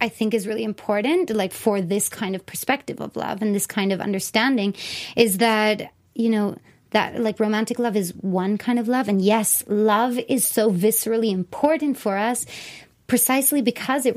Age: 30-49